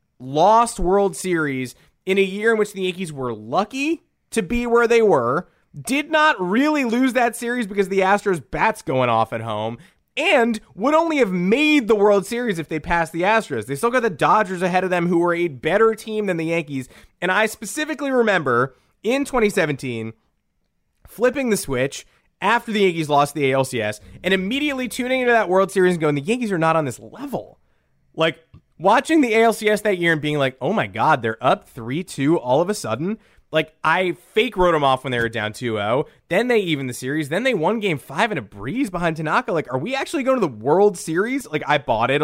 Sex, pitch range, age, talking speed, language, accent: male, 140-215 Hz, 20-39, 210 wpm, English, American